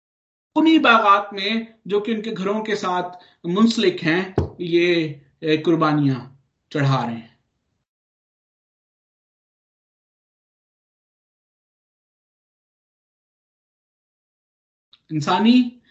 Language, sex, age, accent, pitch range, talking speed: Hindi, male, 50-69, native, 150-205 Hz, 60 wpm